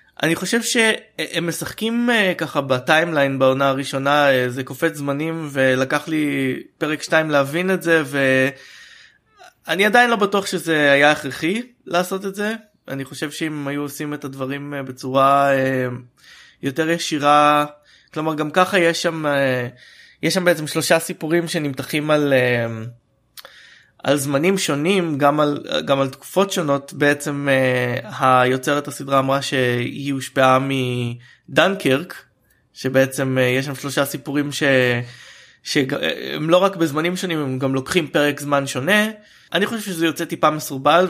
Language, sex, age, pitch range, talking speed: Hebrew, male, 20-39, 130-160 Hz, 130 wpm